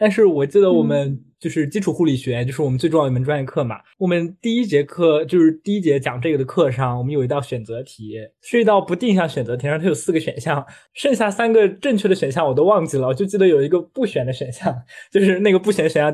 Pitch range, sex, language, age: 135-195 Hz, male, Chinese, 20-39